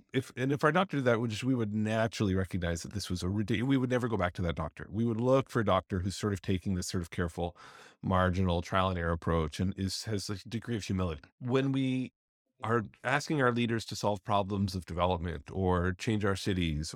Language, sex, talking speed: English, male, 235 wpm